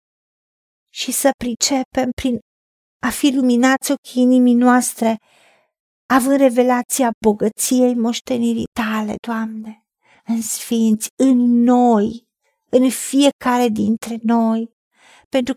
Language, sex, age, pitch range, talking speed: Romanian, female, 50-69, 225-270 Hz, 95 wpm